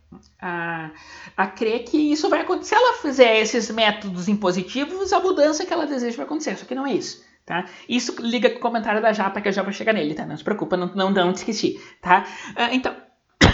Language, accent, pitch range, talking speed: Portuguese, Brazilian, 195-285 Hz, 215 wpm